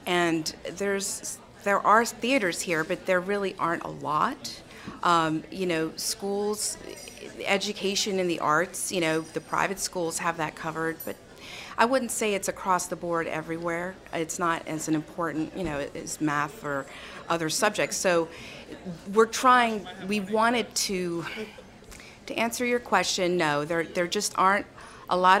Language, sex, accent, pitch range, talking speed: English, female, American, 155-195 Hz, 155 wpm